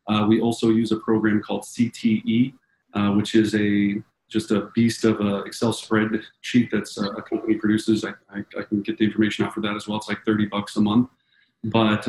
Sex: male